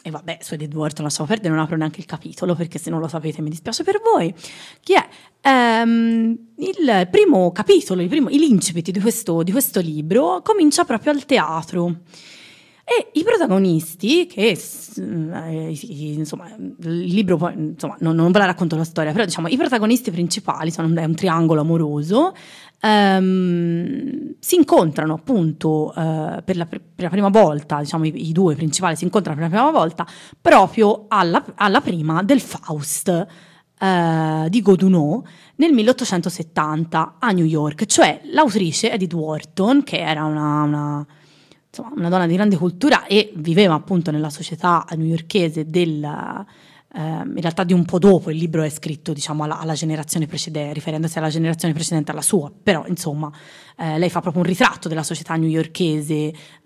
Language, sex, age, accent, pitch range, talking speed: Italian, female, 30-49, native, 160-210 Hz, 165 wpm